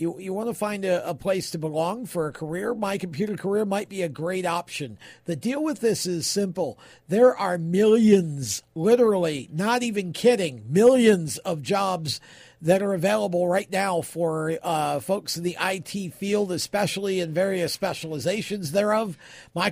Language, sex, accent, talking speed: English, male, American, 165 wpm